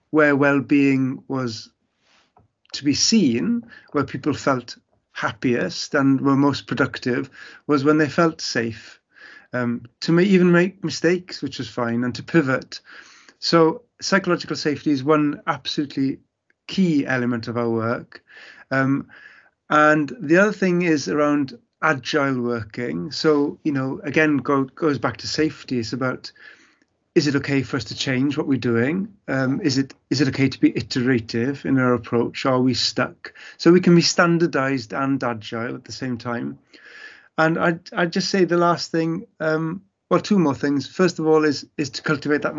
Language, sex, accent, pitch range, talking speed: English, male, British, 130-165 Hz, 165 wpm